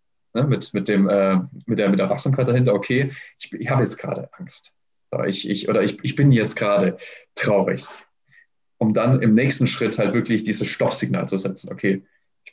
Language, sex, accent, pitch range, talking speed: German, male, German, 100-125 Hz, 190 wpm